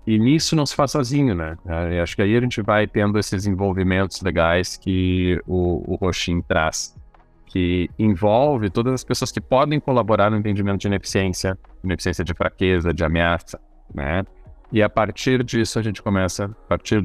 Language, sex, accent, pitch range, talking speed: Portuguese, male, Brazilian, 85-105 Hz, 175 wpm